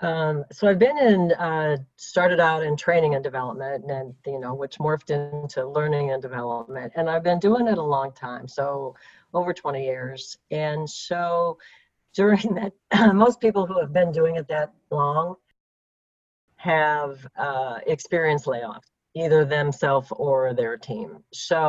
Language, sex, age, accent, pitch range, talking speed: English, female, 50-69, American, 135-170 Hz, 155 wpm